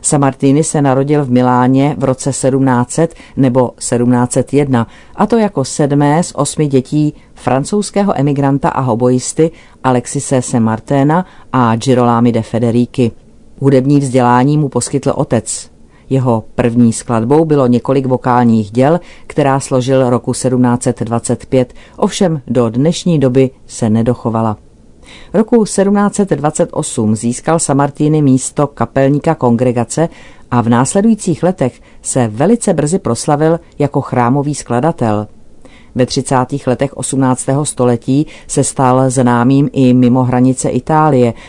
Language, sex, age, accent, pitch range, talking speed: Czech, female, 40-59, native, 120-150 Hz, 115 wpm